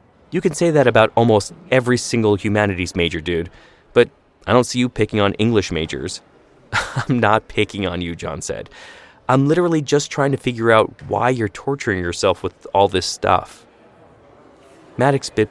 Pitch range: 95-130 Hz